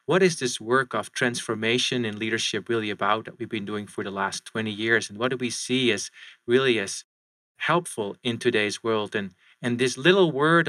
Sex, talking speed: male, 200 wpm